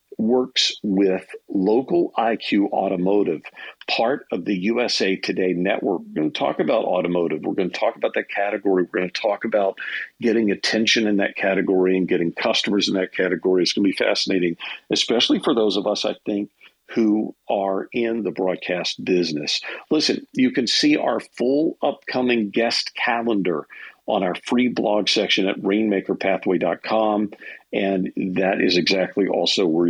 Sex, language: male, English